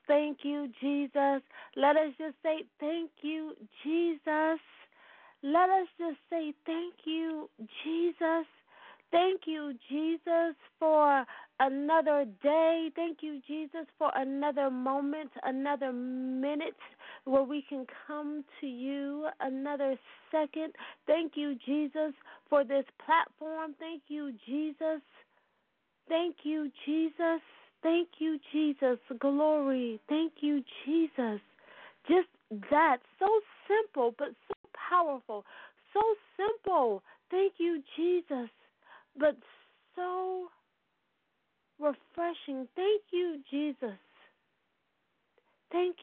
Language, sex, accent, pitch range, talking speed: English, female, American, 275-330 Hz, 100 wpm